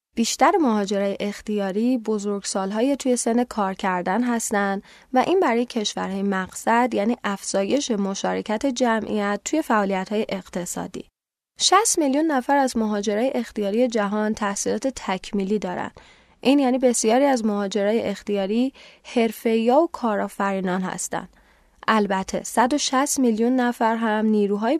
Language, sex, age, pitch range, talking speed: Persian, female, 10-29, 205-255 Hz, 115 wpm